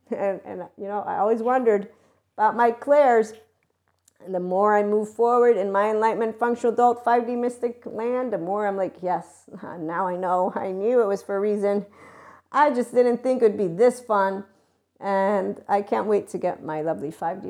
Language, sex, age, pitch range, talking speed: English, female, 40-59, 185-235 Hz, 195 wpm